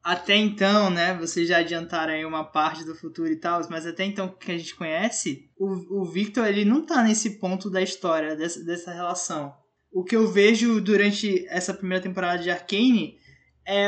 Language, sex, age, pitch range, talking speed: Portuguese, male, 20-39, 180-225 Hz, 190 wpm